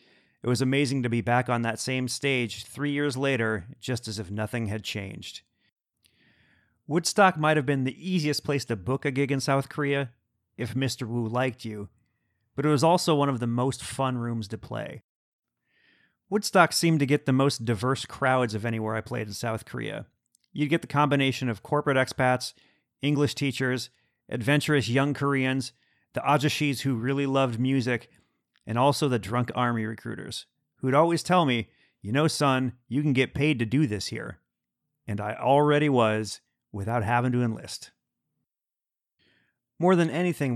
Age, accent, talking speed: 40-59, American, 170 wpm